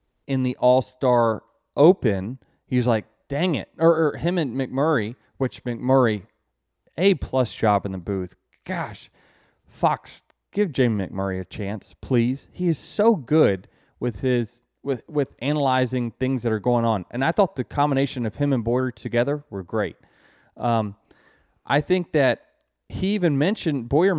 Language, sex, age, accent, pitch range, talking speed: English, male, 30-49, American, 110-145 Hz, 155 wpm